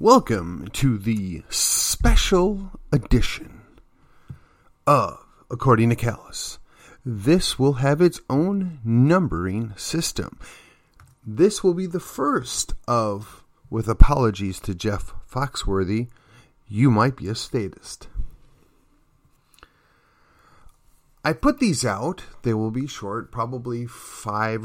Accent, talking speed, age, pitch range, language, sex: American, 100 wpm, 30-49, 110-170 Hz, English, male